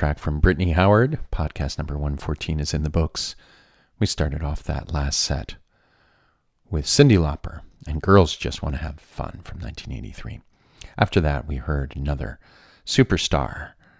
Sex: male